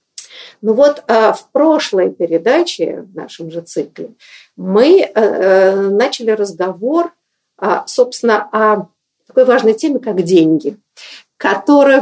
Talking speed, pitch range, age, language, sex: 100 wpm, 175-250 Hz, 50-69, Russian, female